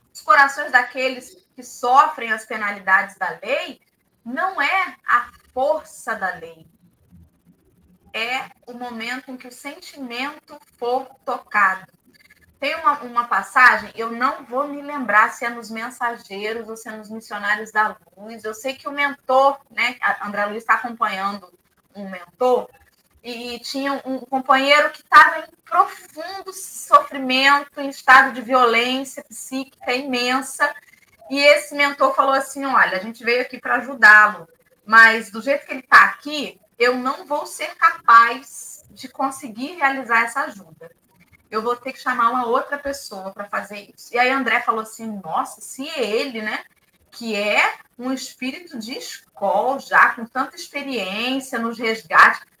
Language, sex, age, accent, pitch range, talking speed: Portuguese, female, 20-39, Brazilian, 220-280 Hz, 150 wpm